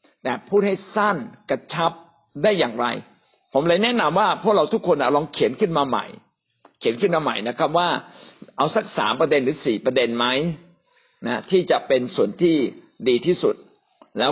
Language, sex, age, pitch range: Thai, male, 60-79, 135-195 Hz